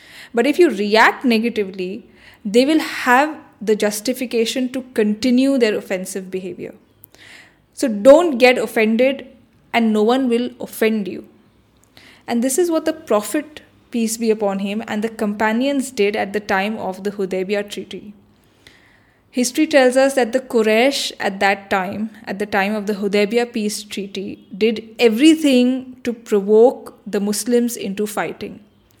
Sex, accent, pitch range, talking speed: female, Indian, 205-255 Hz, 145 wpm